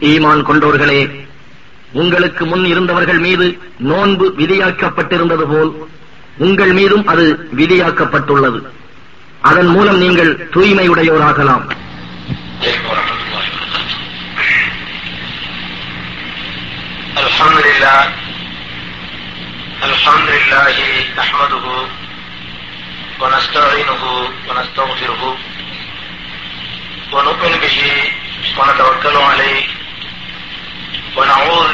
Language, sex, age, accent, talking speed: Tamil, male, 50-69, native, 35 wpm